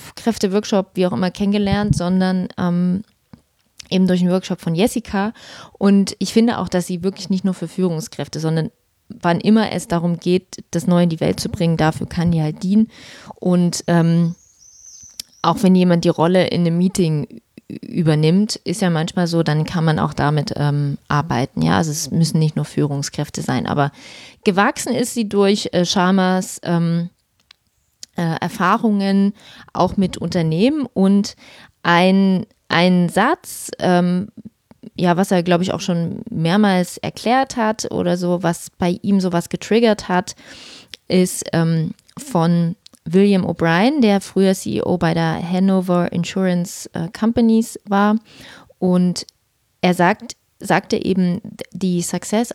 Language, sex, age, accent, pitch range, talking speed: German, female, 30-49, German, 170-200 Hz, 145 wpm